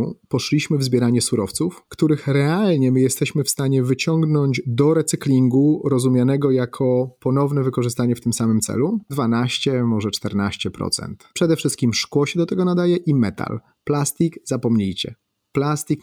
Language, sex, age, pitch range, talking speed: Polish, male, 30-49, 120-155 Hz, 135 wpm